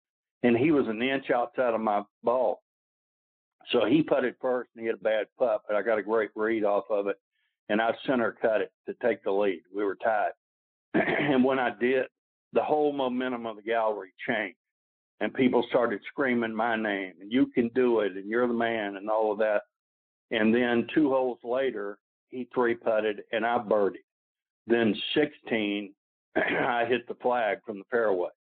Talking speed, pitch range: 190 wpm, 100-125 Hz